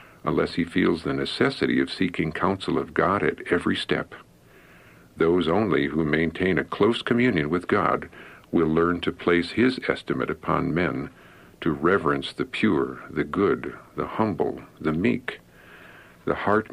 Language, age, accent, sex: English, 60-79, American, male